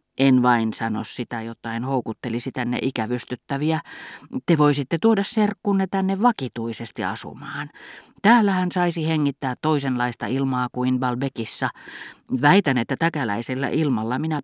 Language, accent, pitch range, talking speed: Finnish, native, 125-155 Hz, 115 wpm